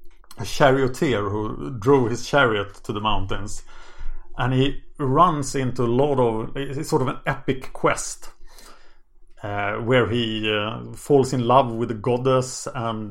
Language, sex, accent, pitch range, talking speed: English, male, Norwegian, 110-145 Hz, 150 wpm